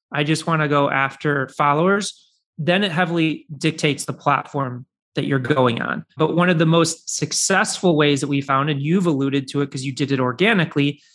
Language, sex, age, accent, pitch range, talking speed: English, male, 30-49, American, 145-170 Hz, 200 wpm